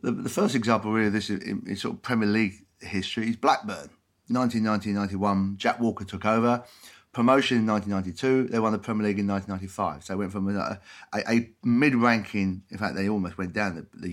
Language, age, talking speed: English, 30-49, 210 wpm